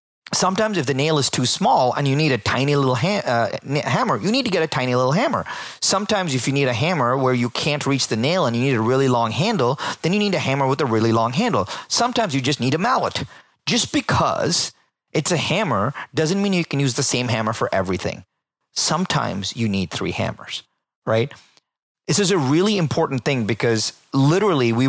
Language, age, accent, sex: English, 30-49, American, male